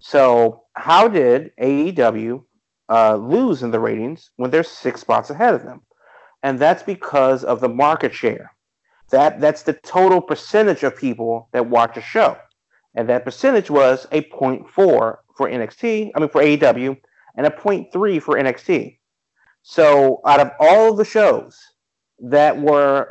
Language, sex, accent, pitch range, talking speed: English, male, American, 125-165 Hz, 155 wpm